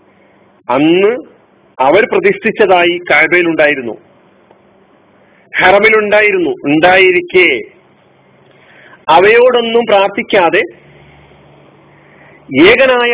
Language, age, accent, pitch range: Malayalam, 40-59, native, 175-235 Hz